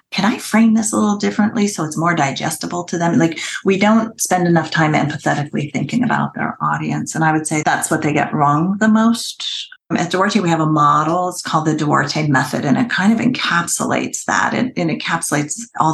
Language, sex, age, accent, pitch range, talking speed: English, female, 40-59, American, 155-205 Hz, 215 wpm